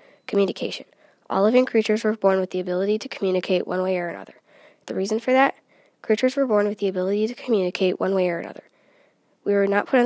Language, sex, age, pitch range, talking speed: English, female, 10-29, 180-220 Hz, 215 wpm